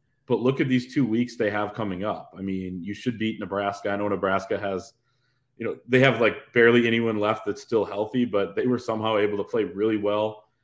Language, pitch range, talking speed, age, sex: English, 100-120 Hz, 225 wpm, 20-39, male